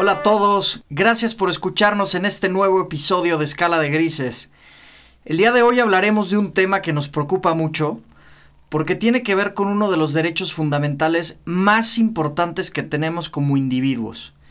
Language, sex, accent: Spanish, male, Mexican